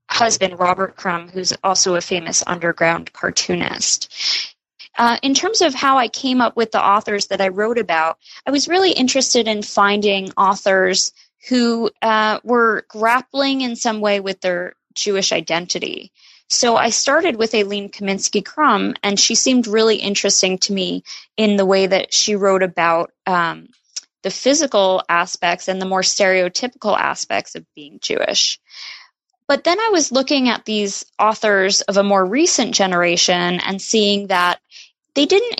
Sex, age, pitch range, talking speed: female, 20-39, 190-255 Hz, 155 wpm